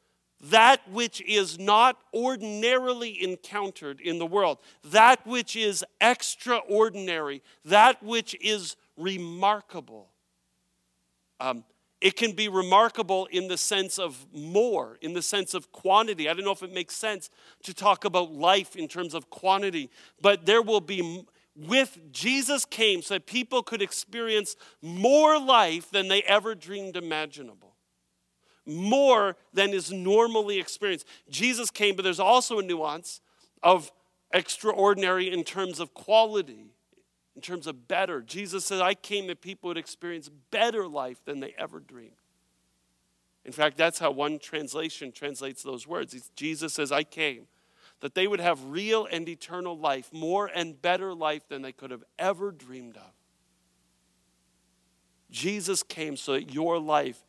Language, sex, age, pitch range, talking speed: English, male, 50-69, 150-205 Hz, 145 wpm